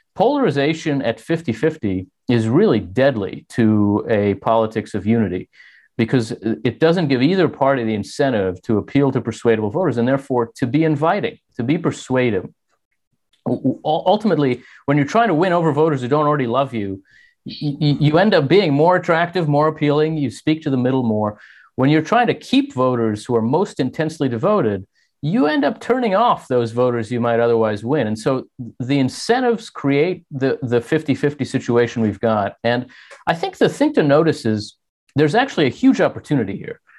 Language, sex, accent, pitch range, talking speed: English, male, American, 115-155 Hz, 170 wpm